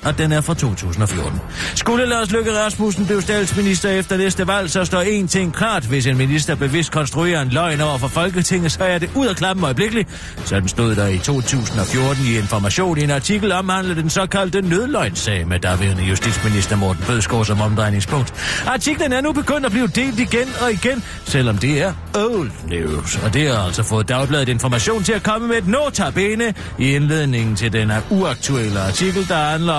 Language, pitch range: Danish, 115-180 Hz